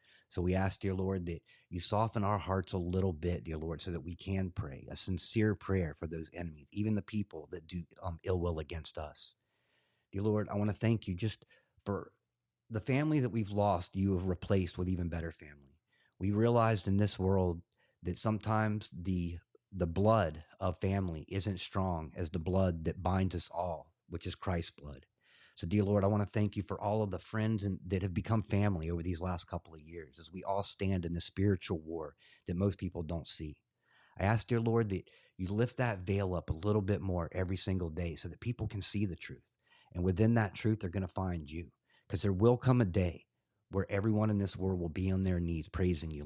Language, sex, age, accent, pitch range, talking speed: English, male, 30-49, American, 85-105 Hz, 220 wpm